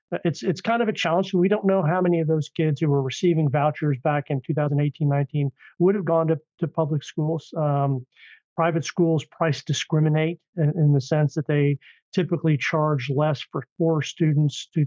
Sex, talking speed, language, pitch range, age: male, 190 wpm, English, 145-170 Hz, 50-69